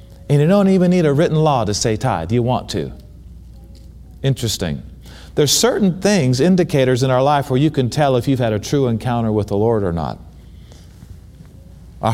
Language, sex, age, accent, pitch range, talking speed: English, male, 40-59, American, 115-175 Hz, 190 wpm